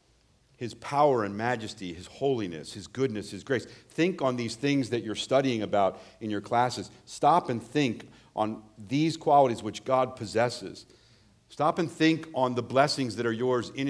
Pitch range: 110-145 Hz